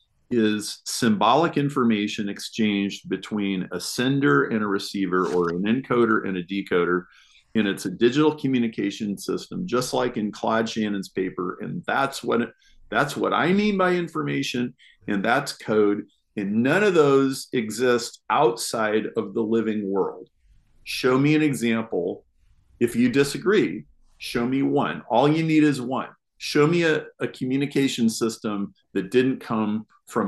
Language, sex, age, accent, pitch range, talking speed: English, male, 40-59, American, 105-135 Hz, 150 wpm